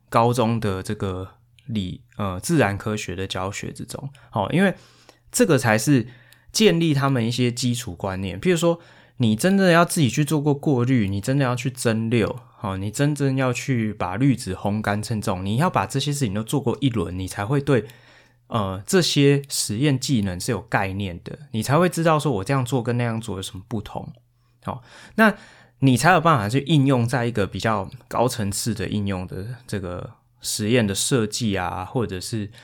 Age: 20-39